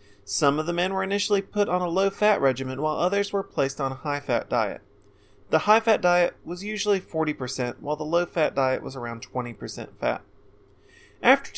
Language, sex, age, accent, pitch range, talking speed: English, male, 30-49, American, 120-180 Hz, 175 wpm